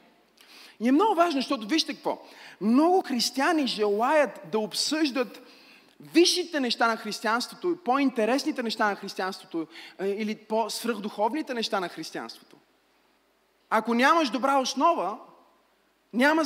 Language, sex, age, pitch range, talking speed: Bulgarian, male, 30-49, 215-280 Hz, 110 wpm